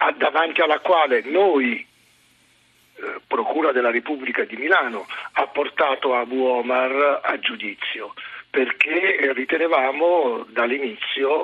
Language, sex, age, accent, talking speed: Italian, male, 50-69, native, 100 wpm